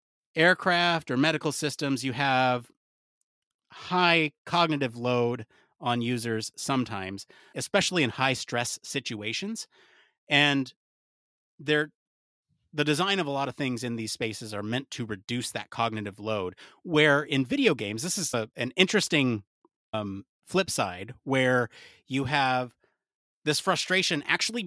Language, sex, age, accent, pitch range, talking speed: English, male, 30-49, American, 115-150 Hz, 125 wpm